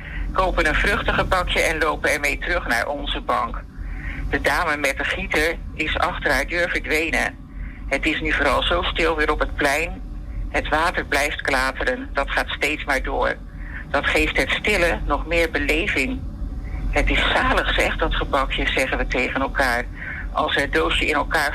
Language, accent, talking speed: Dutch, Dutch, 175 wpm